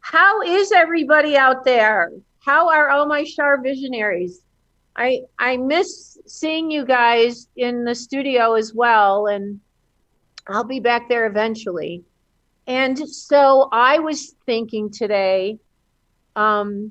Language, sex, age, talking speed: English, female, 50-69, 125 wpm